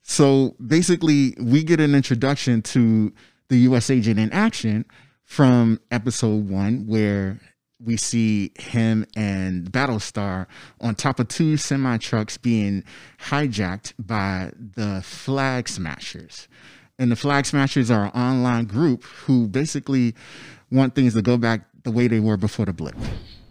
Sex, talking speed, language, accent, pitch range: male, 140 wpm, English, American, 105-135 Hz